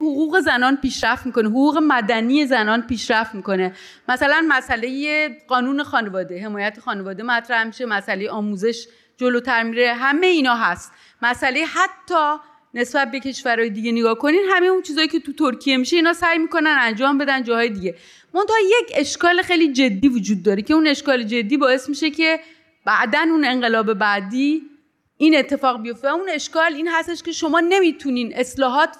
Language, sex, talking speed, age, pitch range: Persian, female, 155 wpm, 30-49, 230-310 Hz